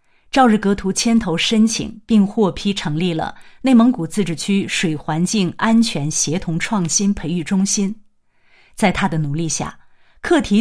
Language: Chinese